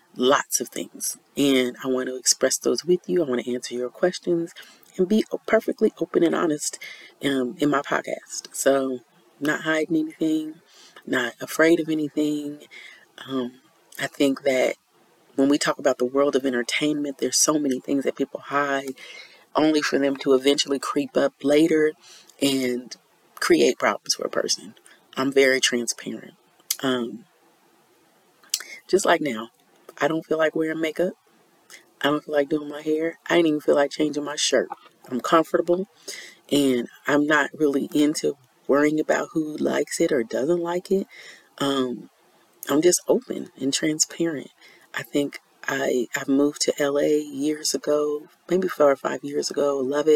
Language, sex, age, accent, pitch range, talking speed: English, female, 30-49, American, 135-160 Hz, 160 wpm